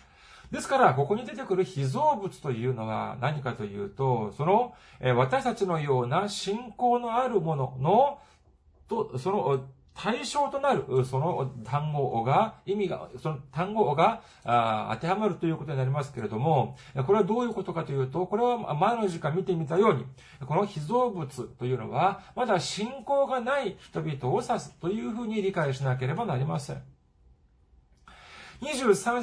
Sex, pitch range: male, 130-205 Hz